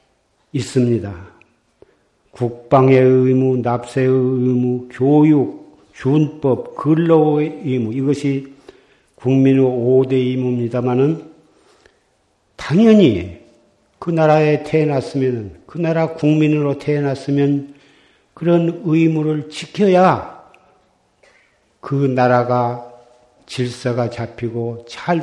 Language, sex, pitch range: Korean, male, 120-155 Hz